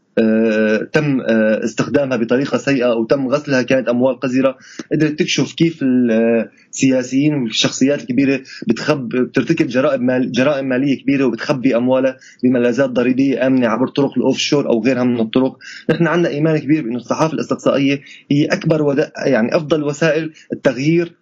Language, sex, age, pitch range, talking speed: Arabic, male, 20-39, 130-160 Hz, 135 wpm